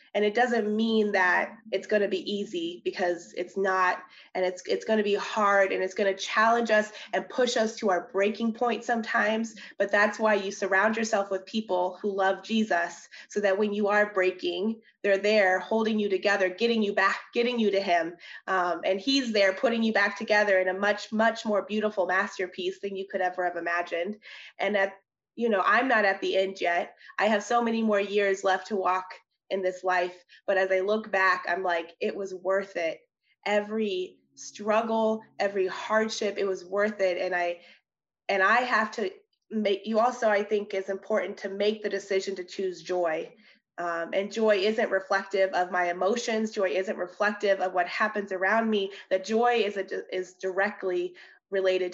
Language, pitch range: English, 185-215 Hz